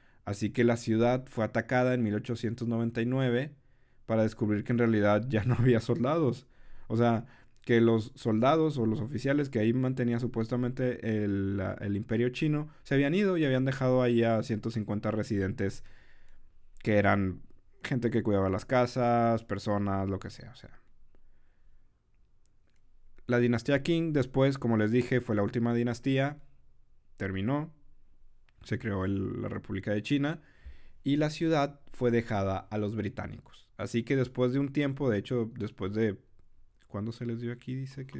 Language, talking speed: Spanish, 155 wpm